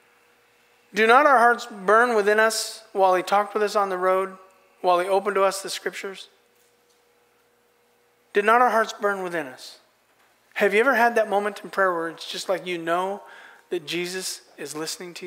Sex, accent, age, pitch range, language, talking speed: male, American, 40-59, 175-215 Hz, English, 190 wpm